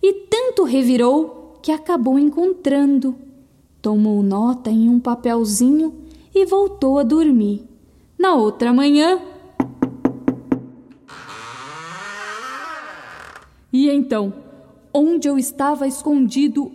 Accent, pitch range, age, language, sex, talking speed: Brazilian, 235-340 Hz, 10-29, Portuguese, female, 85 wpm